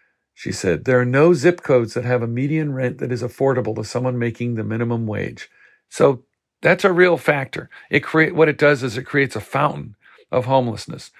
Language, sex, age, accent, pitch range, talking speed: English, male, 50-69, American, 120-155 Hz, 205 wpm